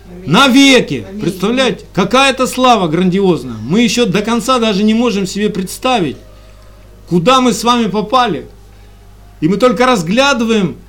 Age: 50-69